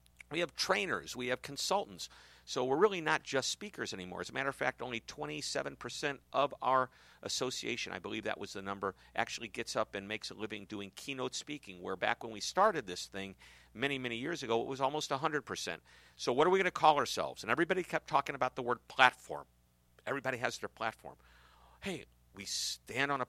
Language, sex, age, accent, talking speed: English, male, 50-69, American, 205 wpm